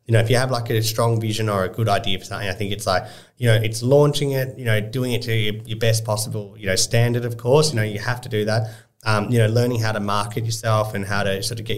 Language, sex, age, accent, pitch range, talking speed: English, male, 30-49, Australian, 100-115 Hz, 300 wpm